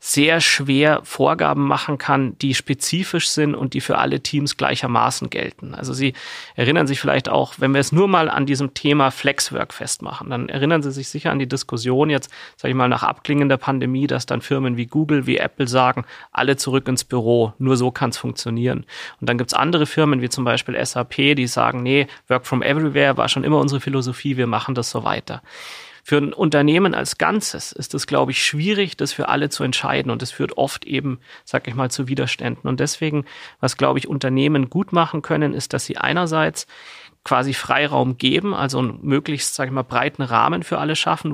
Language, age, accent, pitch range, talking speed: German, 30-49, German, 130-150 Hz, 205 wpm